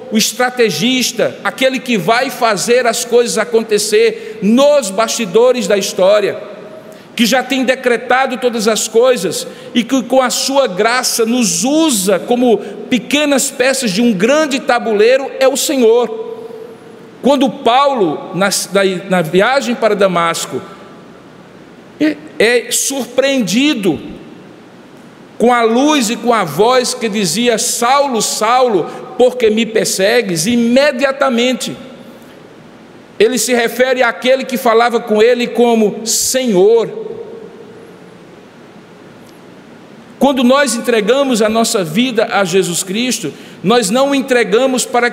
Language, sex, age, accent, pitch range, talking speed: Portuguese, male, 50-69, Brazilian, 220-260 Hz, 115 wpm